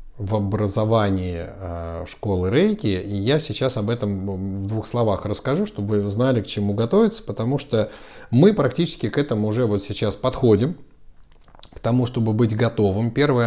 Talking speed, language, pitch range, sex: 160 wpm, Russian, 100-130 Hz, male